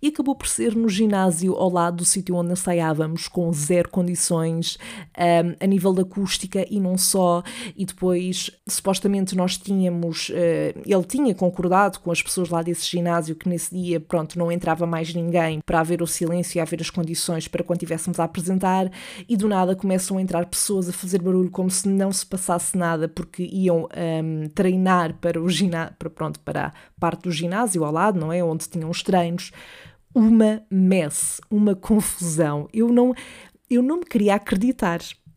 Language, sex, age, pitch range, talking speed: Portuguese, female, 20-39, 170-200 Hz, 180 wpm